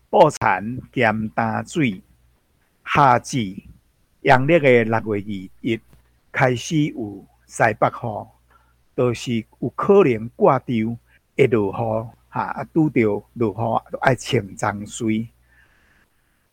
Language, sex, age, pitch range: Chinese, male, 60-79, 110-145 Hz